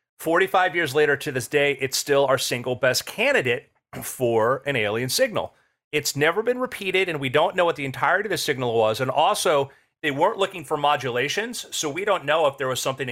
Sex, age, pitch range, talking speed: male, 40-59, 125-155 Hz, 210 wpm